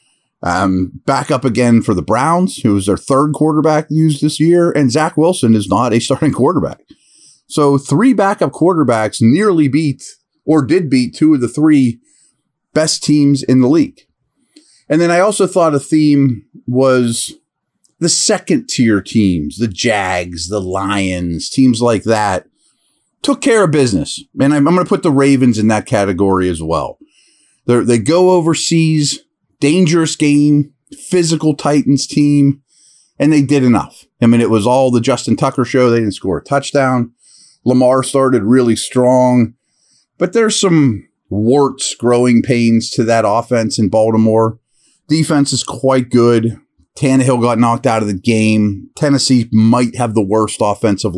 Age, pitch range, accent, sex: 30-49, 110-150 Hz, American, male